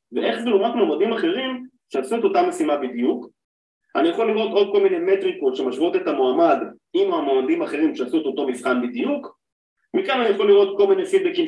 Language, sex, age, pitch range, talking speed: Hebrew, male, 30-49, 325-390 Hz, 185 wpm